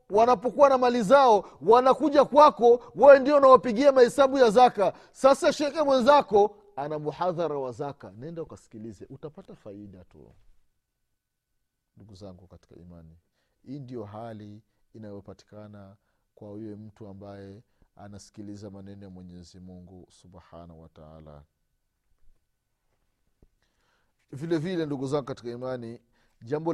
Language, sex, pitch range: Swahili, male, 100-150 Hz